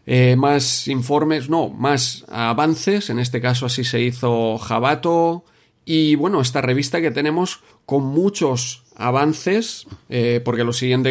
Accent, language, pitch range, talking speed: Spanish, Spanish, 120-145 Hz, 140 wpm